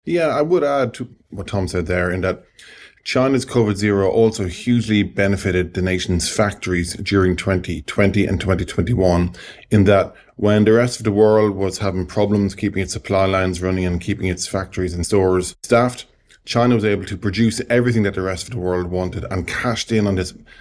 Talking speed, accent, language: 185 wpm, Irish, English